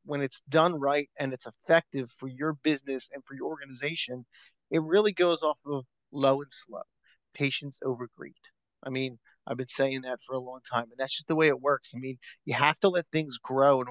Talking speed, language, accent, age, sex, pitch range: 220 wpm, English, American, 30-49, male, 135-175 Hz